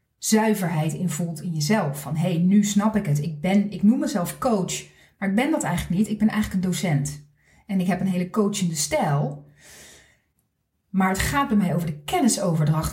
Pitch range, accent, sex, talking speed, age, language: 170-225 Hz, Dutch, female, 200 wpm, 40-59, Dutch